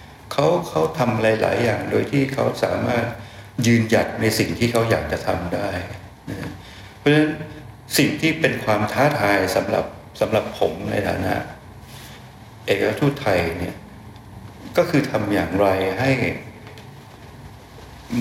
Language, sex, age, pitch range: Thai, male, 60-79, 95-125 Hz